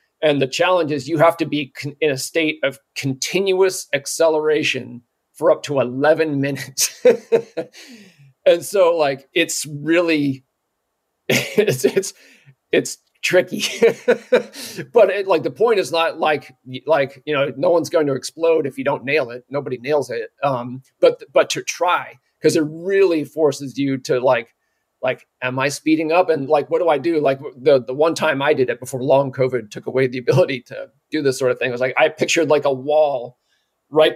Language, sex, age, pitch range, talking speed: English, male, 40-59, 135-165 Hz, 185 wpm